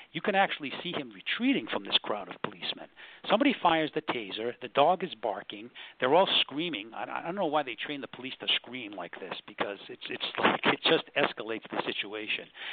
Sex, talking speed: male, 205 wpm